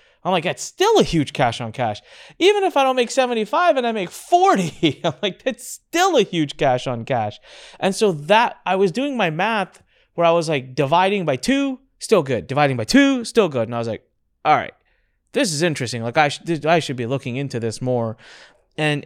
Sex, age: male, 20-39